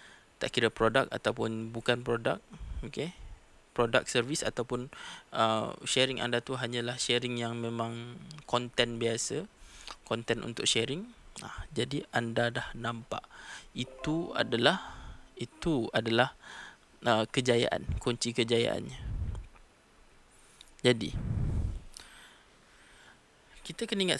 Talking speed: 100 wpm